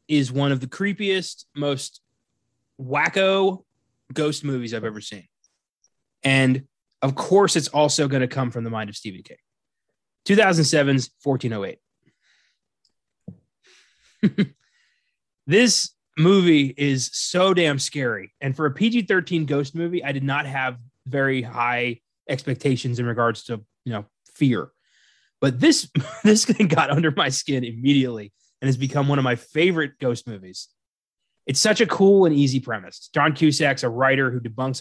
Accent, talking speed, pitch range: American, 145 wpm, 125-155 Hz